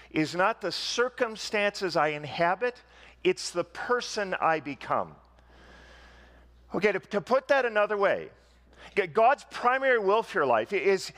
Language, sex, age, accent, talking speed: English, male, 50-69, American, 135 wpm